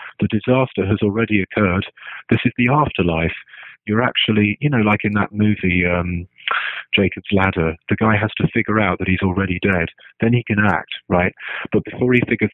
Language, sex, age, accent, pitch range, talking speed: English, male, 40-59, British, 95-115 Hz, 185 wpm